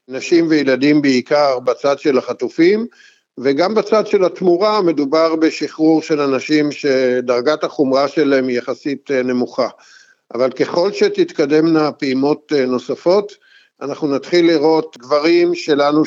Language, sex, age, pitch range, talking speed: Hebrew, male, 50-69, 130-165 Hz, 110 wpm